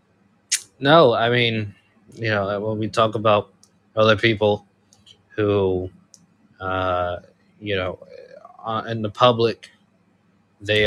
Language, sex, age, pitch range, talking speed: English, male, 20-39, 100-115 Hz, 105 wpm